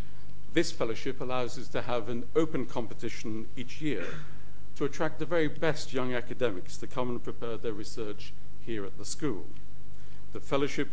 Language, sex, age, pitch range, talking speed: English, male, 50-69, 115-145 Hz, 165 wpm